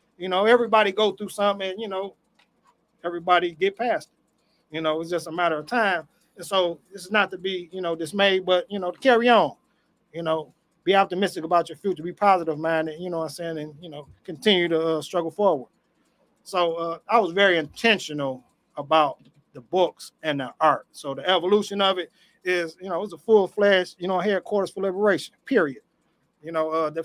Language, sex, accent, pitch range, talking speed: English, male, American, 175-225 Hz, 205 wpm